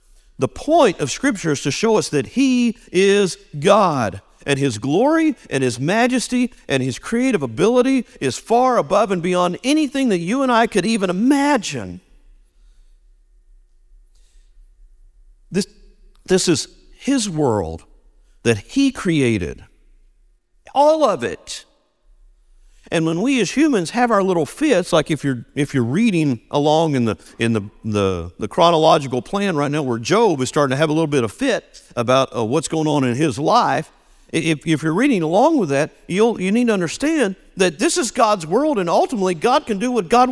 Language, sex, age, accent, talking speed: English, male, 50-69, American, 170 wpm